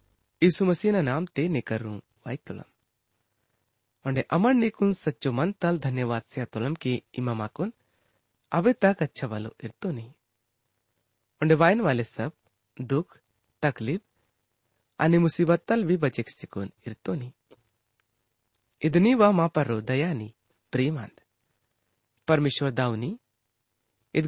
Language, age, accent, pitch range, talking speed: English, 30-49, Indian, 110-165 Hz, 85 wpm